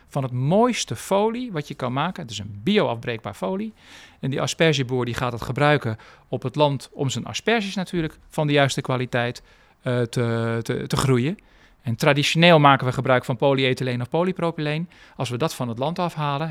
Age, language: 40-59, Dutch